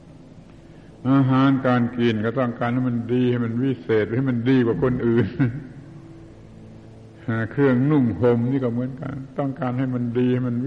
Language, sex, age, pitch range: Thai, male, 70-89, 100-125 Hz